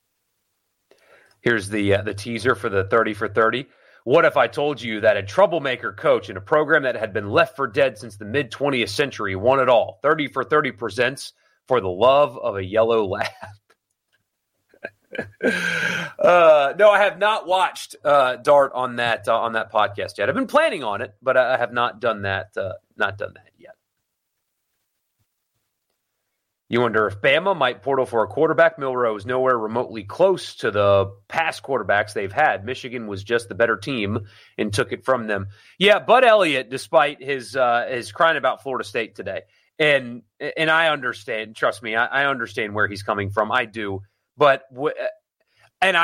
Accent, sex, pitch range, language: American, male, 110-145 Hz, English